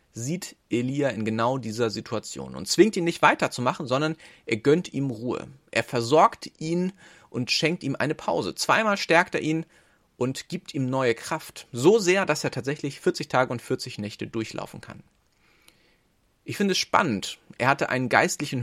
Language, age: German, 30-49